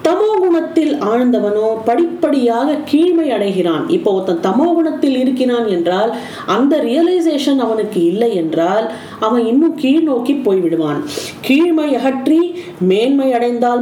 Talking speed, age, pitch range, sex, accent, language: 80 wpm, 40-59, 205-290 Hz, female, native, Tamil